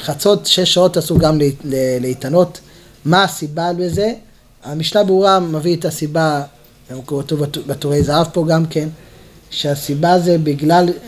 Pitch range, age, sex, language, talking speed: 155-200 Hz, 30-49, male, Hebrew, 130 wpm